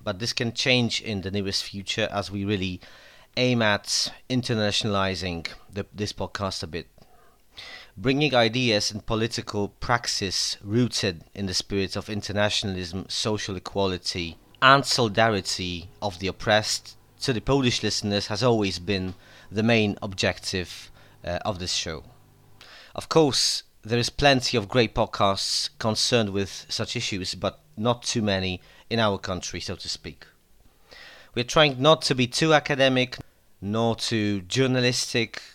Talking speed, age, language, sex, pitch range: 140 wpm, 30-49, Polish, male, 100-120 Hz